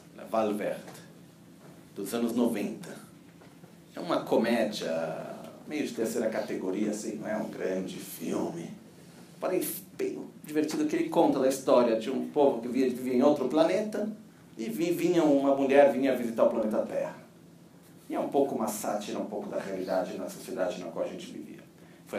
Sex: male